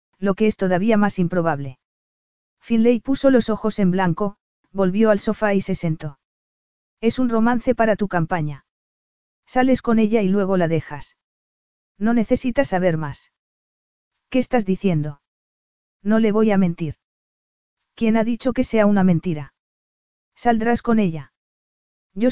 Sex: female